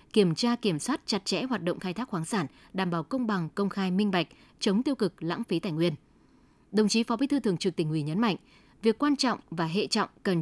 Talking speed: 260 wpm